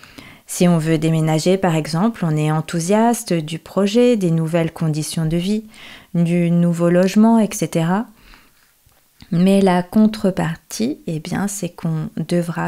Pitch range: 160-190 Hz